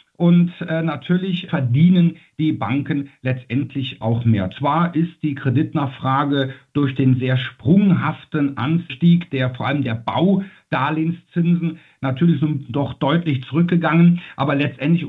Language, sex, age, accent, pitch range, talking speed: German, male, 50-69, German, 140-175 Hz, 110 wpm